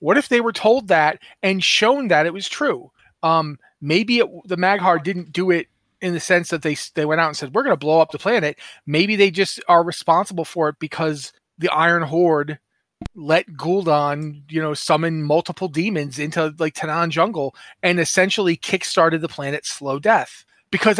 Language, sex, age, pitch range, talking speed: English, male, 30-49, 155-190 Hz, 190 wpm